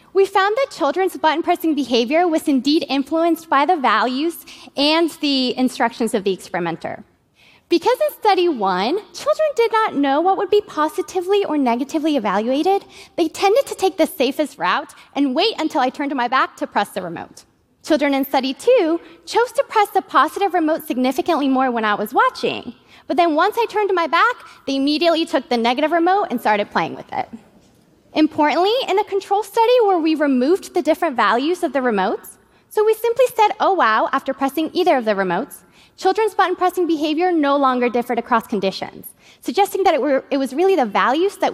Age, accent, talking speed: 20-39, American, 185 wpm